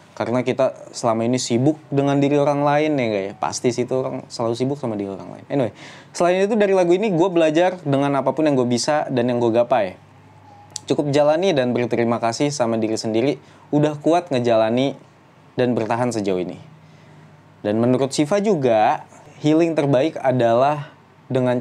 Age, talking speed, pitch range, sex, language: 20-39, 170 wpm, 125-175 Hz, male, Indonesian